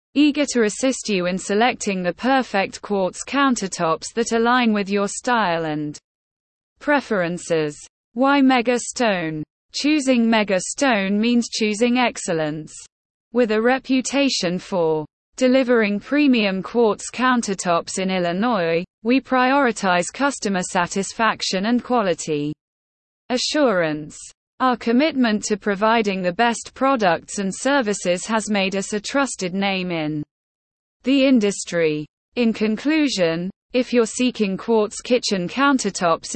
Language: English